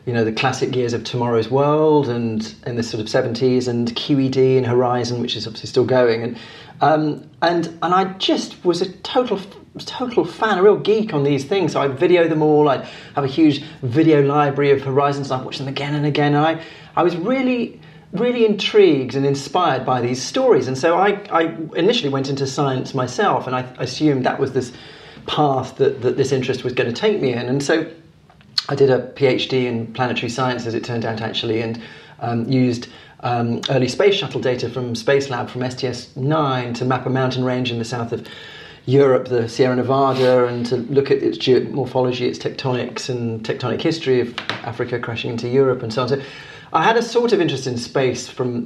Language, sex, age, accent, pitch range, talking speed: English, male, 30-49, British, 125-150 Hz, 205 wpm